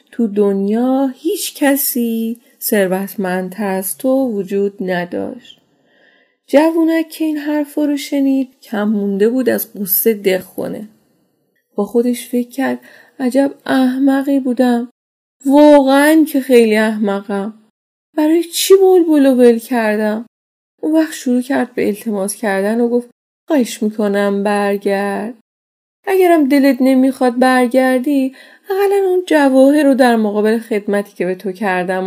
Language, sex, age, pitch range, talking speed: Persian, female, 30-49, 210-275 Hz, 120 wpm